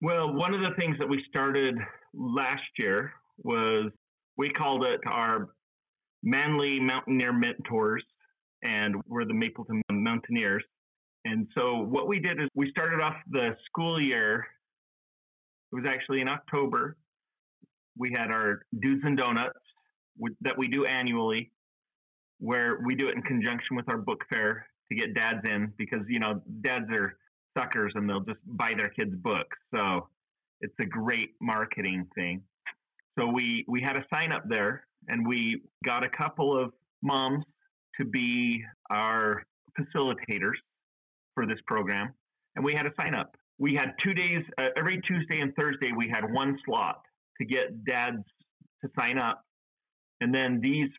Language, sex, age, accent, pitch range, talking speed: English, male, 30-49, American, 115-155 Hz, 155 wpm